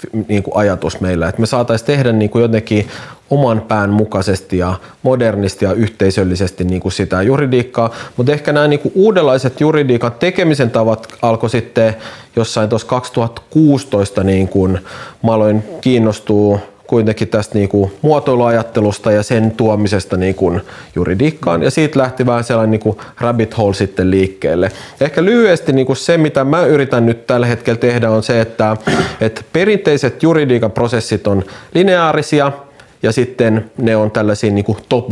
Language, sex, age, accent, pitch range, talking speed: Finnish, male, 30-49, native, 110-135 Hz, 135 wpm